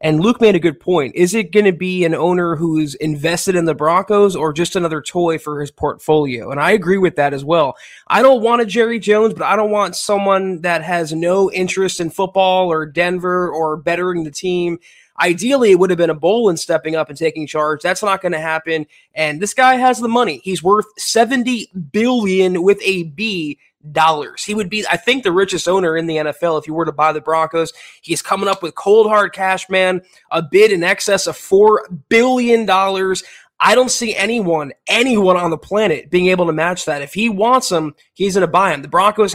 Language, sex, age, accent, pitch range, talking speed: English, male, 20-39, American, 160-210 Hz, 215 wpm